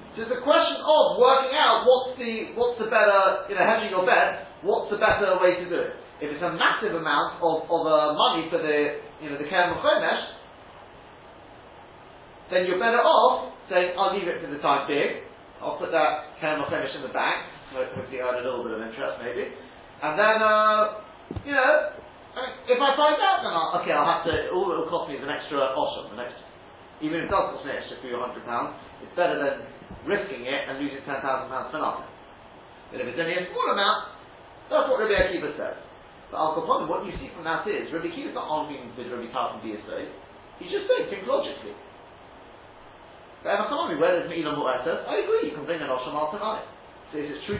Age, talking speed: 10-29, 210 wpm